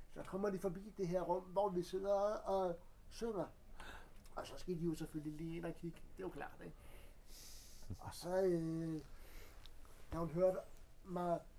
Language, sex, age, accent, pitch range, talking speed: Danish, male, 60-79, native, 150-185 Hz, 180 wpm